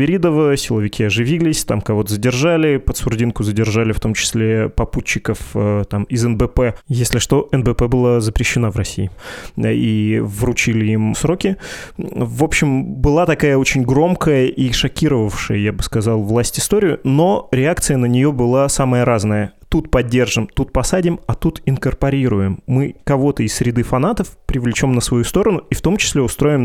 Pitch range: 115-140 Hz